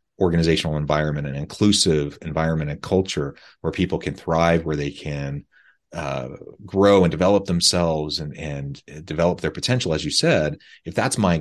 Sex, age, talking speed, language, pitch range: male, 30-49, 160 wpm, English, 75-90 Hz